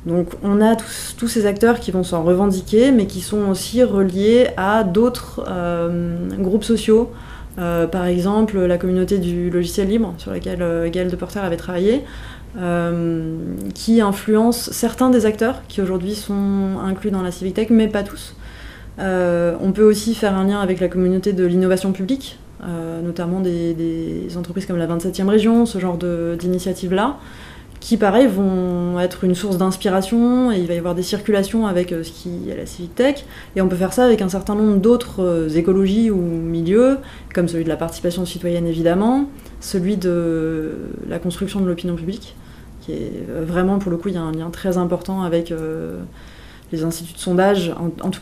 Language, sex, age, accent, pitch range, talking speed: French, female, 20-39, French, 170-205 Hz, 185 wpm